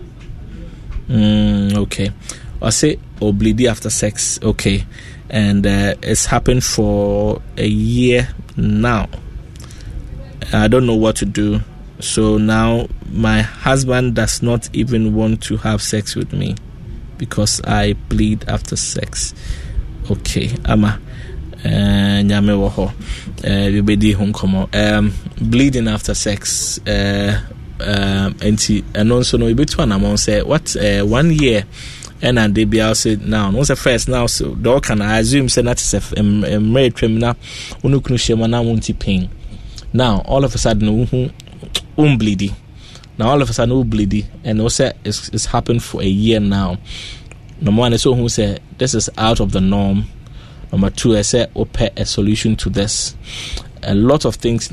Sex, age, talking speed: male, 20-39, 145 wpm